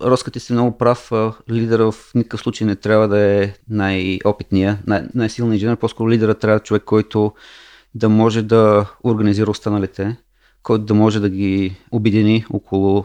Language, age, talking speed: Bulgarian, 30-49, 145 wpm